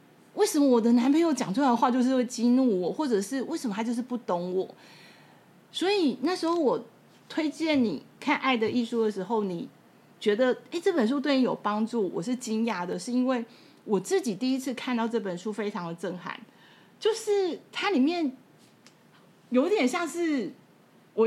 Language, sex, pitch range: Chinese, female, 210-275 Hz